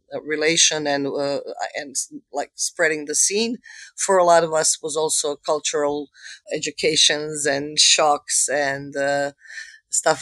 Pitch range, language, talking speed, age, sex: 140-170 Hz, English, 135 wpm, 20-39, female